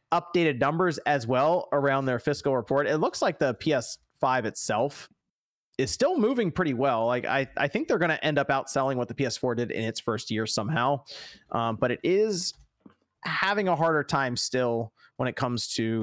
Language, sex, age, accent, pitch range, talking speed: English, male, 30-49, American, 110-150 Hz, 190 wpm